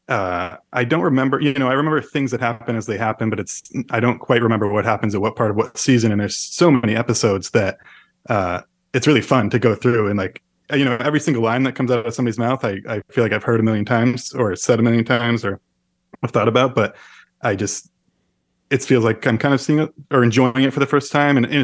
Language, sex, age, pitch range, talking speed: English, male, 20-39, 110-135 Hz, 255 wpm